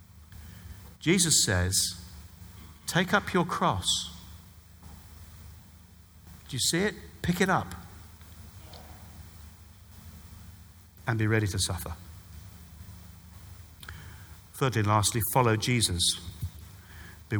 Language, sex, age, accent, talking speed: English, male, 50-69, British, 85 wpm